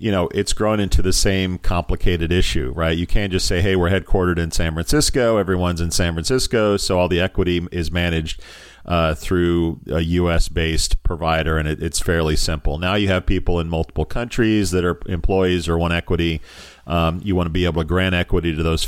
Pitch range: 85-105 Hz